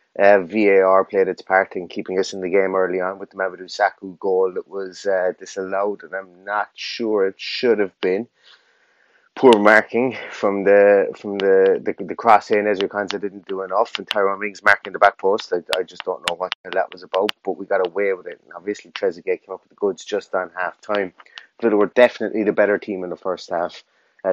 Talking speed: 220 wpm